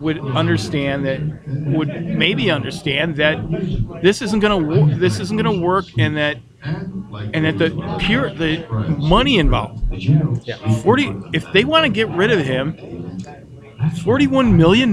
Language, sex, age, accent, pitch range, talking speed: English, male, 40-59, American, 140-180 Hz, 150 wpm